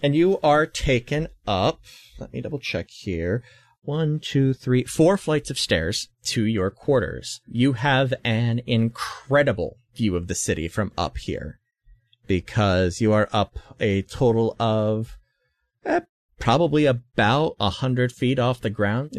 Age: 30-49